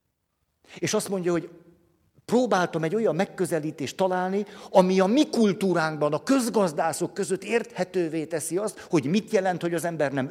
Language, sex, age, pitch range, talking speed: Hungarian, male, 50-69, 145-200 Hz, 150 wpm